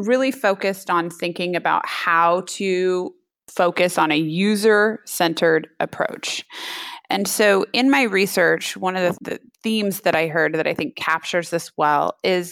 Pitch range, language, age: 160-200 Hz, English, 20-39